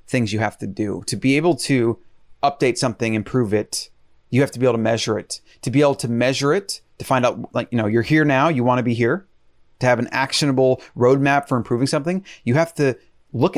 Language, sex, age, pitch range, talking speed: English, male, 30-49, 115-145 Hz, 230 wpm